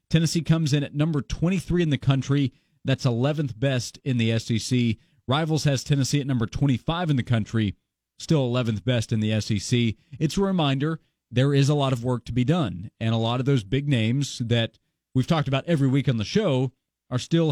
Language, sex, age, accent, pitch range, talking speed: English, male, 40-59, American, 125-155 Hz, 205 wpm